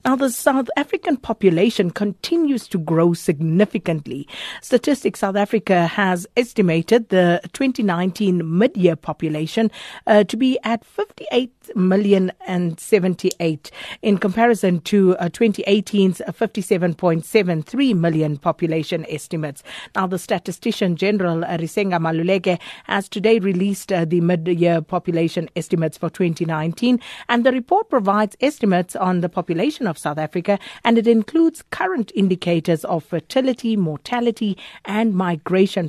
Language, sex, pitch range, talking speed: English, female, 170-220 Hz, 120 wpm